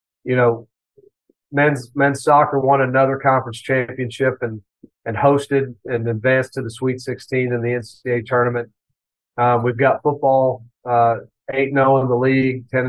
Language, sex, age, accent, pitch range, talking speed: English, male, 40-59, American, 120-140 Hz, 140 wpm